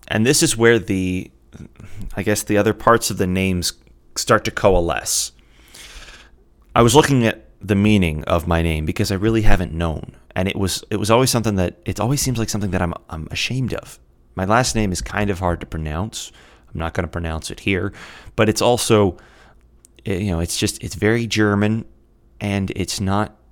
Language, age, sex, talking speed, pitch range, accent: English, 30-49, male, 195 wpm, 80-110 Hz, American